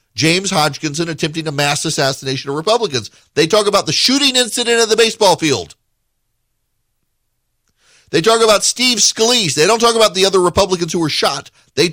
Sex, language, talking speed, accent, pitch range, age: male, English, 170 wpm, American, 105-155 Hz, 50-69